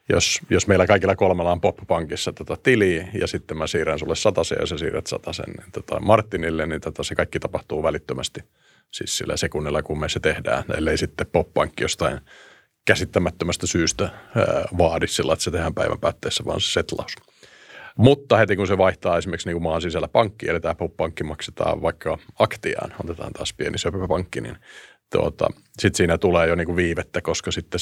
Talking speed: 170 wpm